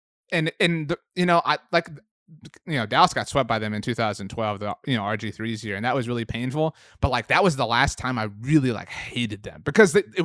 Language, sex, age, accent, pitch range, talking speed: English, male, 30-49, American, 110-140 Hz, 240 wpm